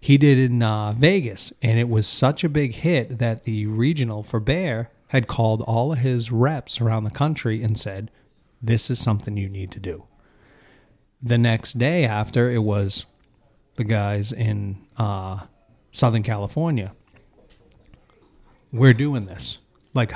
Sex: male